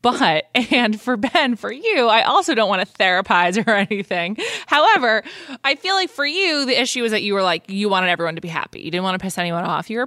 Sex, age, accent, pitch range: female, 20-39, American, 165-215 Hz